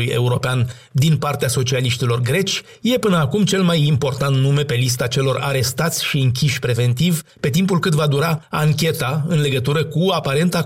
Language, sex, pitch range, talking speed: Romanian, male, 125-155 Hz, 165 wpm